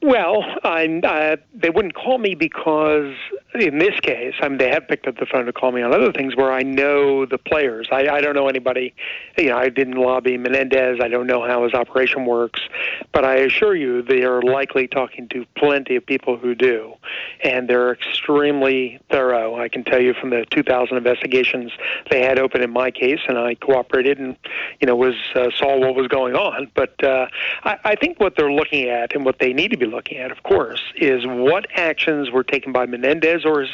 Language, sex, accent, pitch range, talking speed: English, male, American, 125-145 Hz, 215 wpm